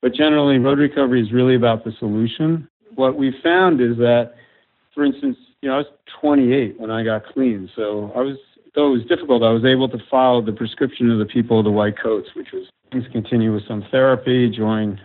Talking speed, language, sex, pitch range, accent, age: 215 wpm, English, male, 115-135 Hz, American, 50-69